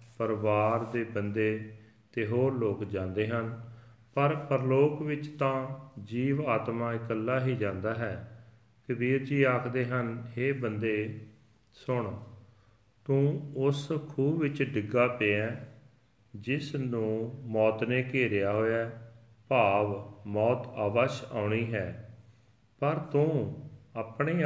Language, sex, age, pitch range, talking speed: Punjabi, male, 40-59, 110-130 Hz, 115 wpm